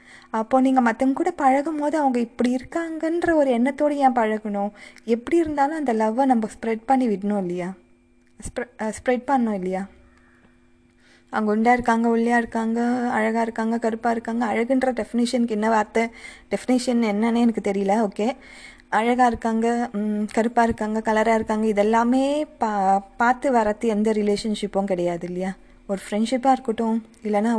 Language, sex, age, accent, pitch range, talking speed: Tamil, female, 20-39, native, 200-245 Hz, 125 wpm